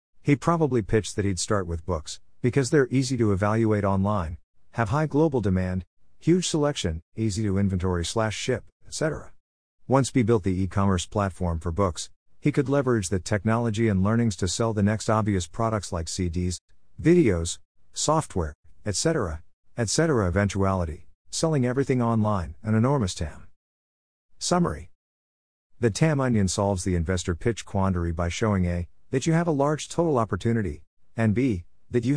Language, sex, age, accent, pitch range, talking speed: English, male, 50-69, American, 90-115 Hz, 155 wpm